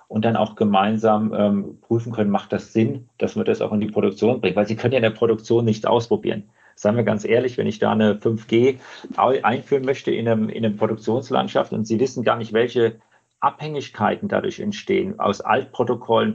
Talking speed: 195 wpm